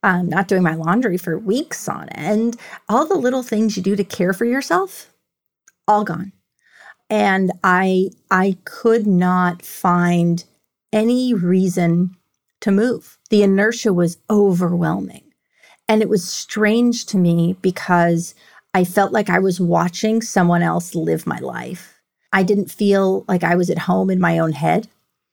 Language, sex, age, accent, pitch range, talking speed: English, female, 30-49, American, 175-215 Hz, 155 wpm